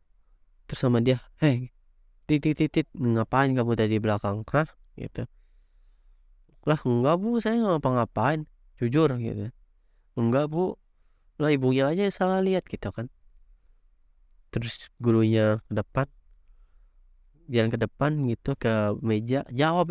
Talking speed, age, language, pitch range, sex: 130 wpm, 20-39, Indonesian, 105-130 Hz, male